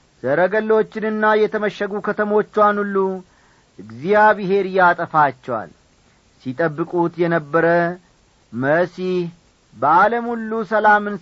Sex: male